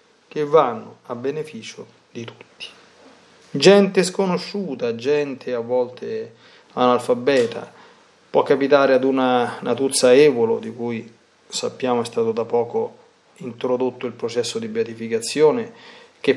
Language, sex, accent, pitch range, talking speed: Italian, male, native, 120-180 Hz, 115 wpm